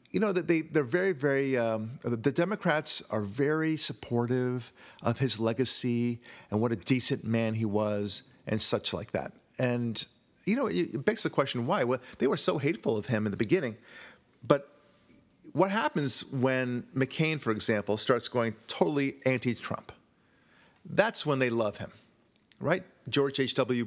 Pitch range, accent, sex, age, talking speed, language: 110-140 Hz, American, male, 50-69, 155 wpm, English